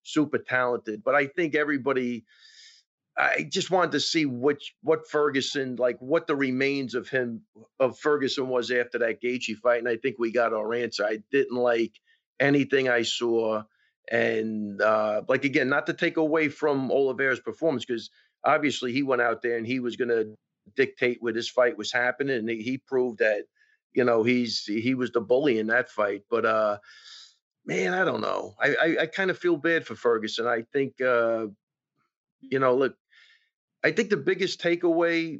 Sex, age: male, 40-59